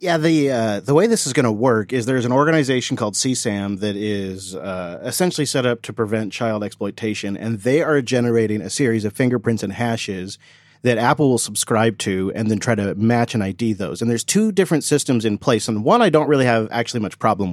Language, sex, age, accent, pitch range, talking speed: English, male, 40-59, American, 110-145 Hz, 225 wpm